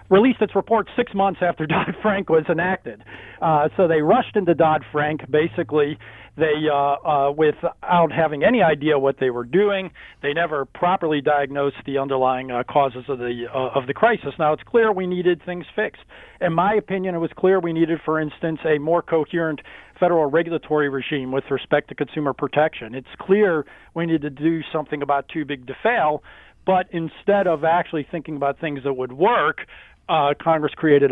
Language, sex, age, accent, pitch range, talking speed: English, male, 40-59, American, 140-170 Hz, 180 wpm